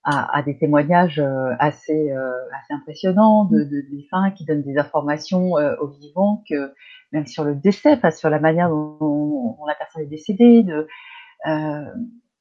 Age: 30-49